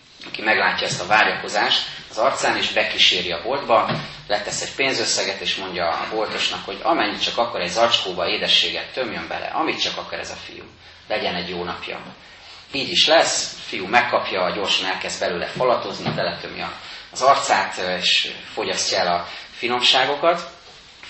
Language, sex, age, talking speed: Hungarian, male, 30-49, 165 wpm